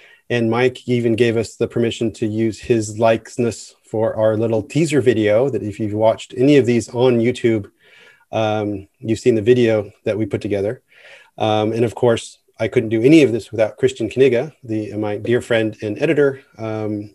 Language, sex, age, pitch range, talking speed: English, male, 30-49, 110-125 Hz, 185 wpm